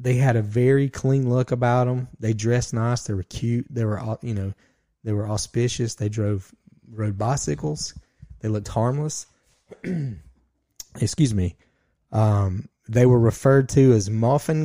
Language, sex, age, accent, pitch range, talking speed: English, male, 30-49, American, 110-130 Hz, 150 wpm